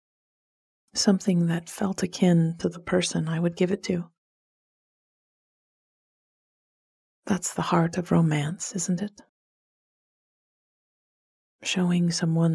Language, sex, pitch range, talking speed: English, female, 165-190 Hz, 100 wpm